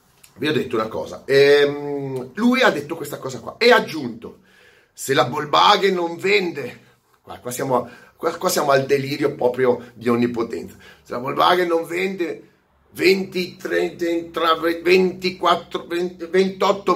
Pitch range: 125-195 Hz